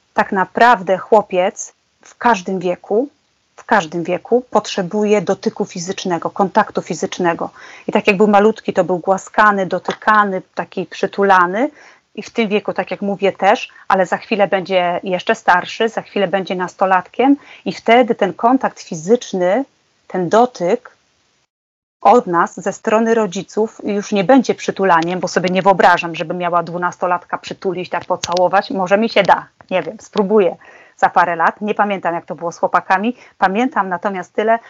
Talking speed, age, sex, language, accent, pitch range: 155 wpm, 30-49, female, Polish, native, 185-220 Hz